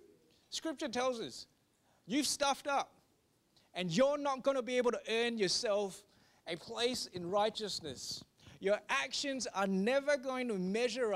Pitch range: 210-275 Hz